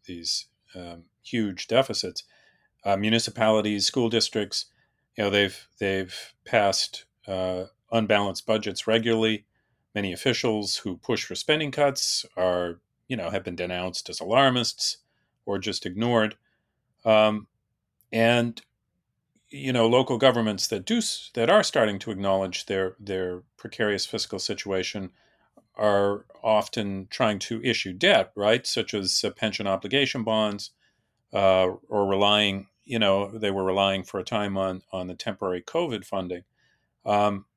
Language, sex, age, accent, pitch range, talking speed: English, male, 40-59, American, 95-115 Hz, 130 wpm